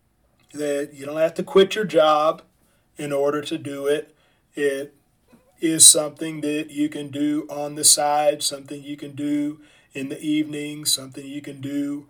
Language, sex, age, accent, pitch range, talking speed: English, male, 40-59, American, 140-160 Hz, 170 wpm